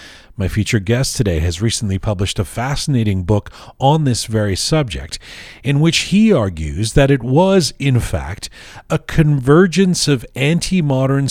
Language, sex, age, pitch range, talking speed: English, male, 40-59, 105-135 Hz, 145 wpm